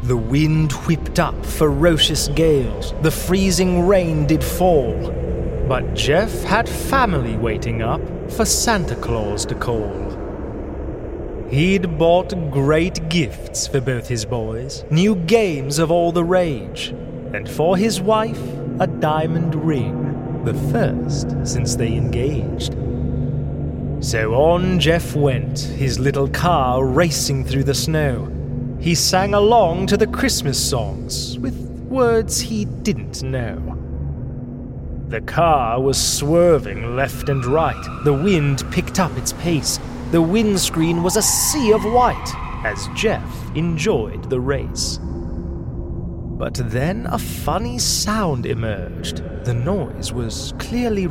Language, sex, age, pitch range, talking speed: English, male, 30-49, 120-175 Hz, 125 wpm